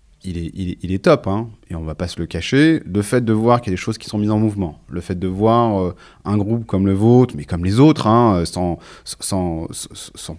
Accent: French